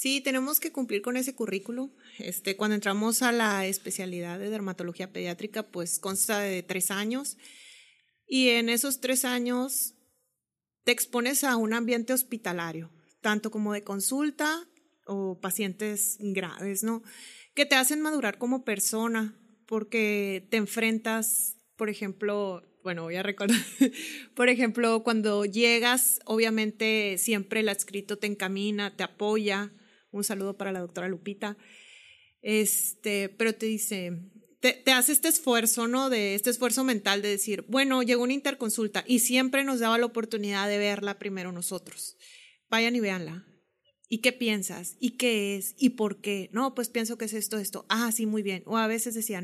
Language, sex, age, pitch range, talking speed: Spanish, female, 30-49, 200-245 Hz, 160 wpm